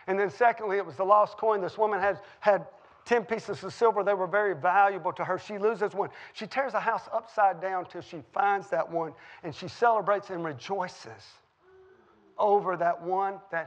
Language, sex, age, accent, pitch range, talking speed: English, male, 40-59, American, 175-210 Hz, 200 wpm